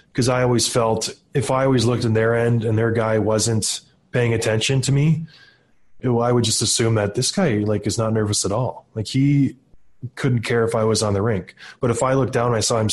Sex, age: male, 20-39